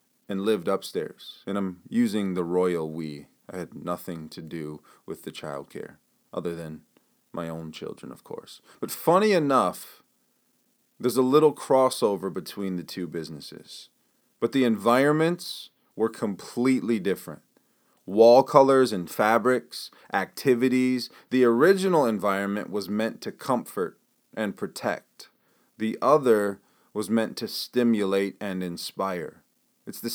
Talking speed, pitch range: 130 wpm, 100-145 Hz